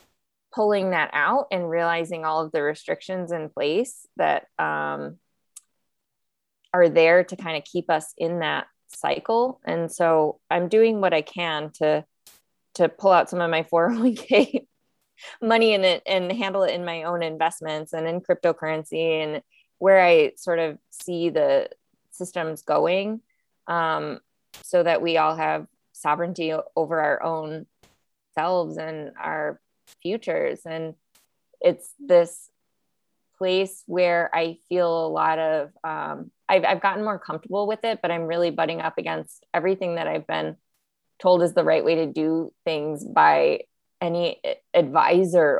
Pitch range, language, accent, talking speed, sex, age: 155-185 Hz, English, American, 150 wpm, female, 20-39